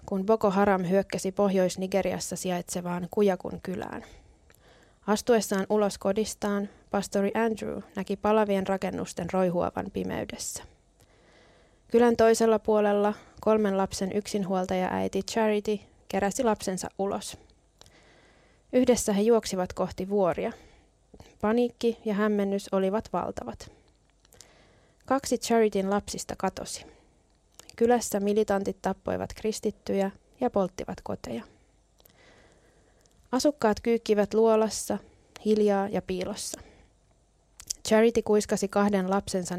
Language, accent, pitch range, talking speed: Finnish, native, 195-220 Hz, 90 wpm